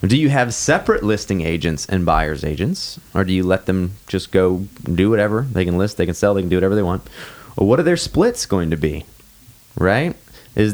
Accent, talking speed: American, 225 wpm